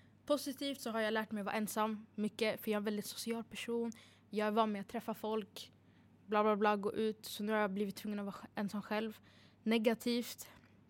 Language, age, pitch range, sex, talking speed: Swedish, 10-29, 205-235 Hz, female, 220 wpm